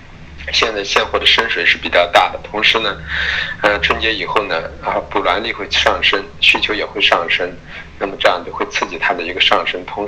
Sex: male